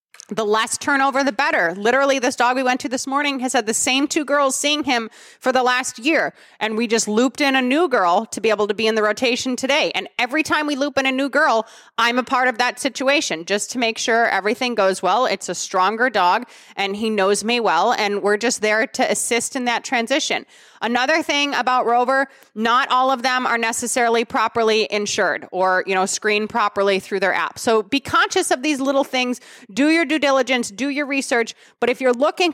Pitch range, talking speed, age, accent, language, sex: 220-275 Hz, 220 wpm, 30-49, American, English, female